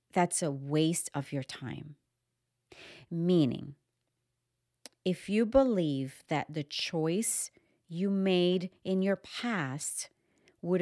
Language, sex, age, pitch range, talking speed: English, female, 40-59, 130-195 Hz, 105 wpm